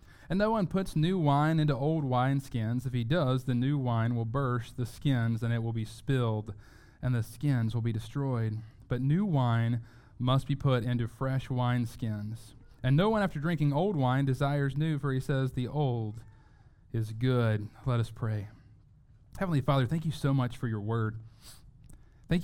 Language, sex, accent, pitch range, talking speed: English, male, American, 115-135 Hz, 180 wpm